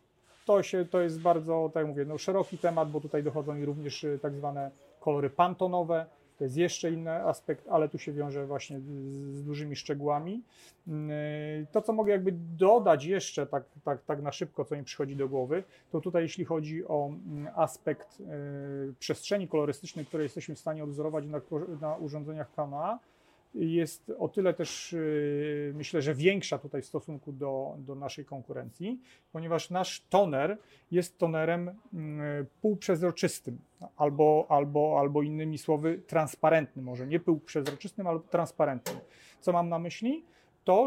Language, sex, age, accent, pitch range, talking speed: Polish, male, 40-59, native, 145-175 Hz, 155 wpm